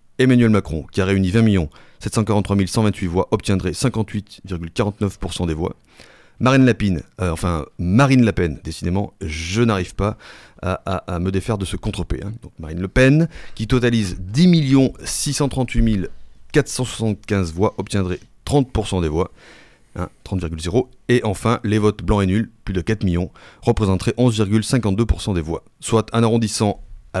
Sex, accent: male, French